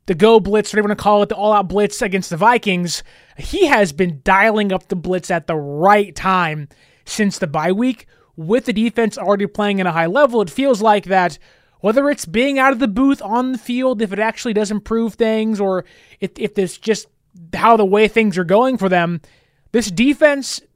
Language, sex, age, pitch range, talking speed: English, male, 20-39, 185-235 Hz, 215 wpm